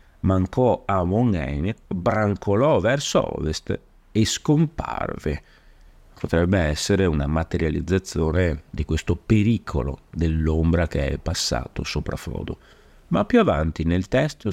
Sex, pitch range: male, 80-110 Hz